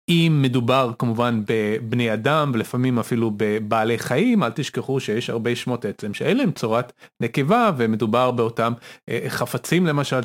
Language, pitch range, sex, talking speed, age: Hebrew, 120-145 Hz, male, 135 wpm, 30-49